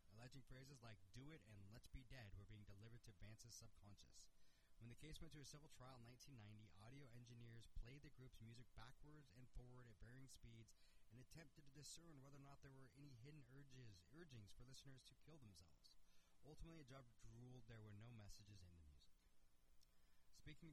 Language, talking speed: English, 195 wpm